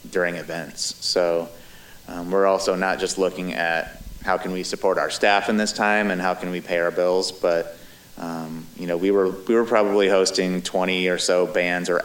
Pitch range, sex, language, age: 85-95 Hz, male, English, 30-49